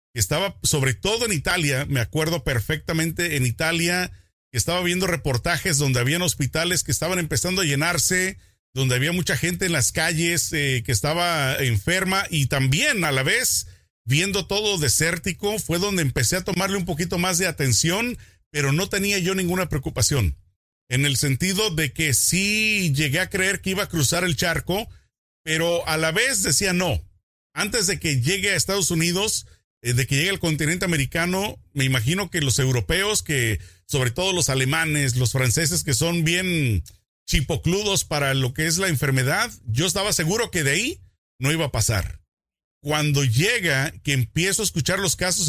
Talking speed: 175 wpm